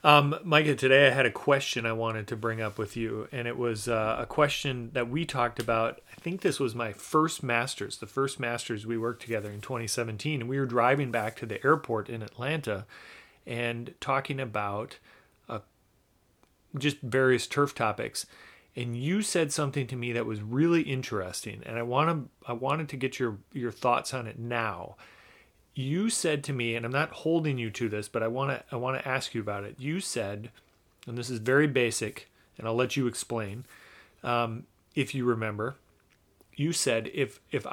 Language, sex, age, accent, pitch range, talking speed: English, male, 30-49, American, 115-140 Hz, 190 wpm